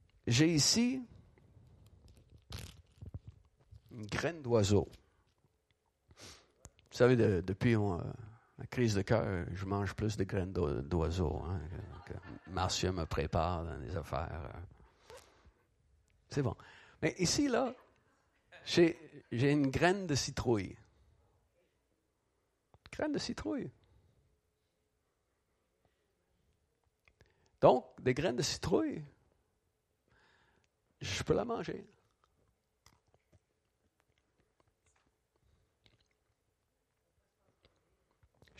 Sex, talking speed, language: male, 75 wpm, French